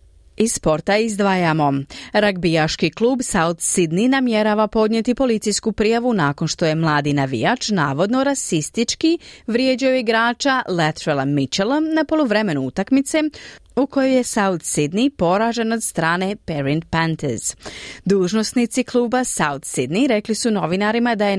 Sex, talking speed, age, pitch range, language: female, 125 wpm, 30-49, 165-235 Hz, Croatian